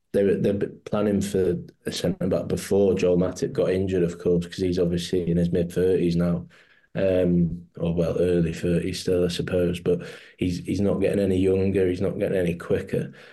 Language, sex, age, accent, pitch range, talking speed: English, male, 20-39, British, 90-100 Hz, 195 wpm